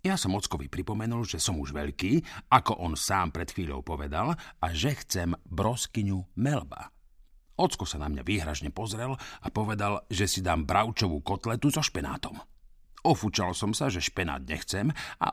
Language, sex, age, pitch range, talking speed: Slovak, male, 50-69, 85-120 Hz, 160 wpm